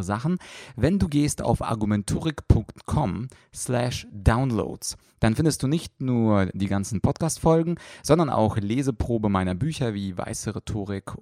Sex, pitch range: male, 100-125 Hz